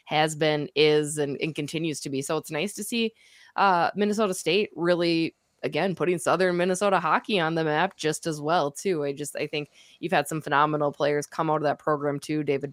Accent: American